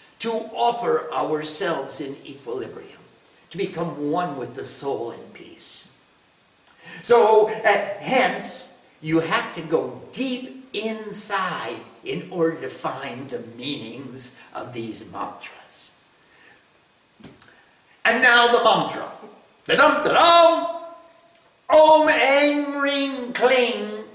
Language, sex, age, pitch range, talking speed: English, male, 60-79, 205-275 Hz, 100 wpm